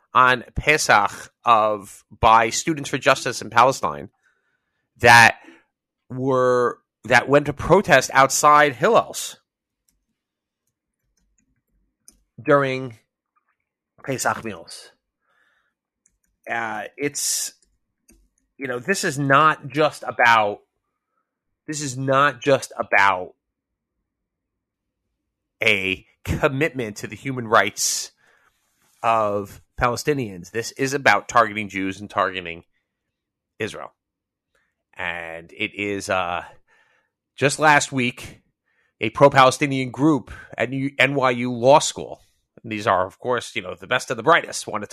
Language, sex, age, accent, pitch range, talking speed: English, male, 30-49, American, 105-140 Hz, 105 wpm